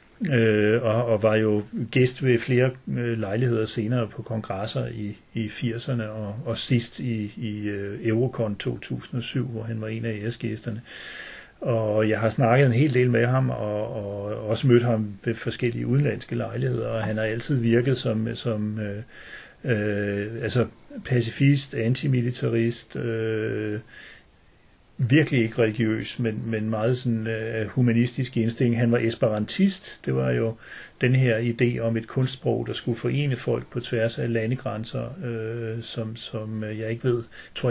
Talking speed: 145 wpm